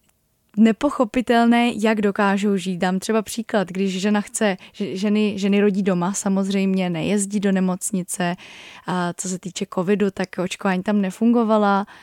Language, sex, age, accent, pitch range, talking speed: Czech, female, 20-39, native, 190-220 Hz, 135 wpm